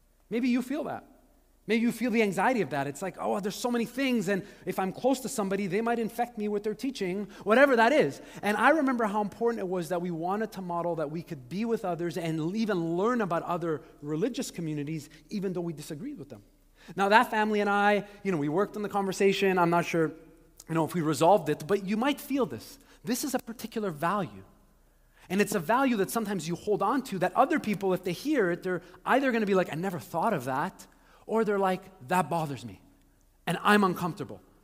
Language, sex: English, male